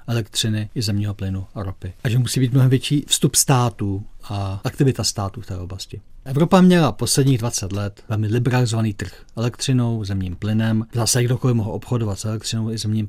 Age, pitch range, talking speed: 40-59, 100-120 Hz, 180 wpm